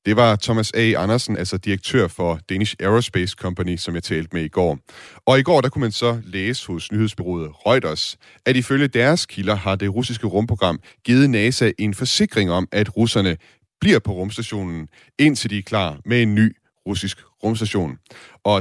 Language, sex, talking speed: Danish, male, 180 wpm